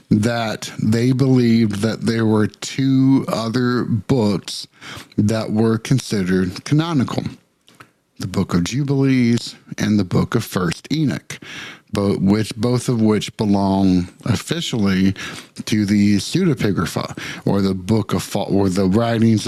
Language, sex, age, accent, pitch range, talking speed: English, male, 50-69, American, 100-125 Hz, 110 wpm